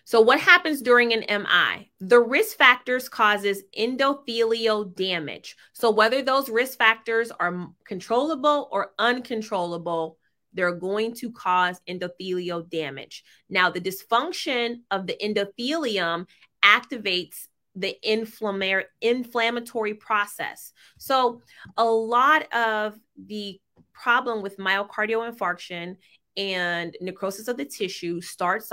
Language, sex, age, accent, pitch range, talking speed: English, female, 20-39, American, 185-245 Hz, 110 wpm